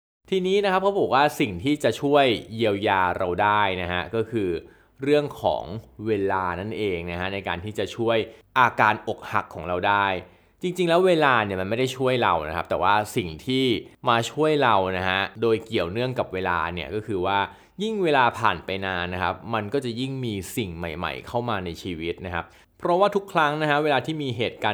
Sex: male